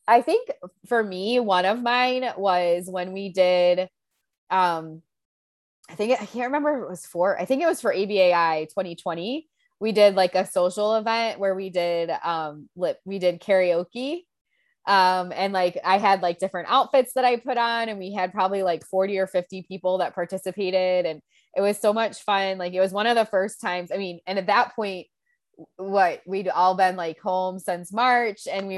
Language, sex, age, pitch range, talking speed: English, female, 20-39, 180-245 Hz, 195 wpm